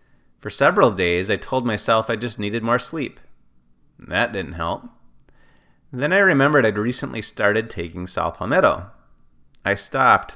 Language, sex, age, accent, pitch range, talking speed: English, male, 30-49, American, 90-115 Hz, 145 wpm